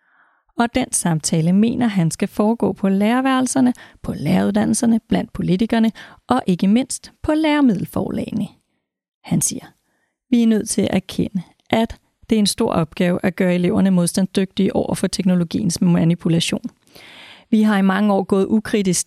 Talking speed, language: 150 wpm, Danish